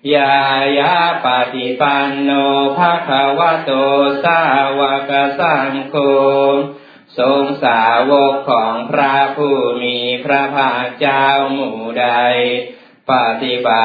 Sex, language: male, Thai